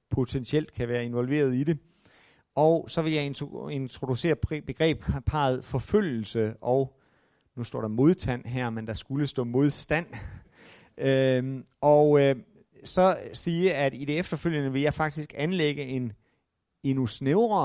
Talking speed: 135 wpm